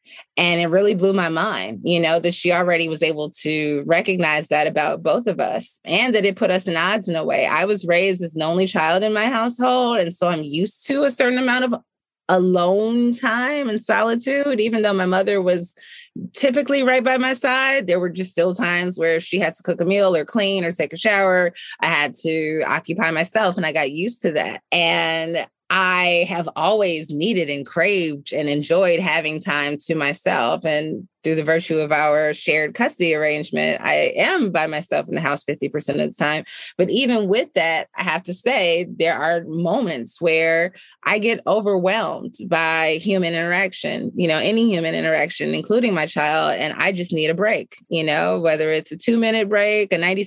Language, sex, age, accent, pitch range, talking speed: English, female, 20-39, American, 160-210 Hz, 200 wpm